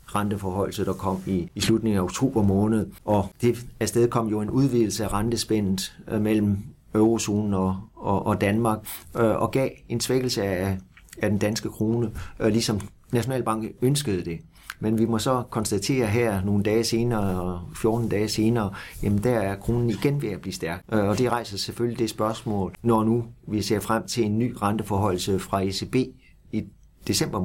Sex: male